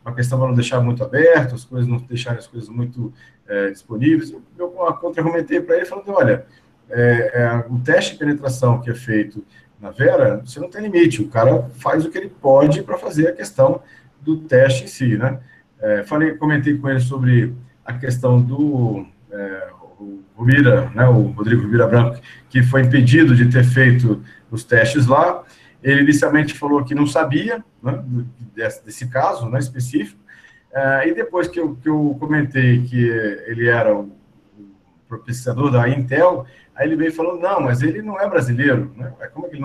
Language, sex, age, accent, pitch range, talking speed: Portuguese, male, 50-69, Brazilian, 120-150 Hz, 190 wpm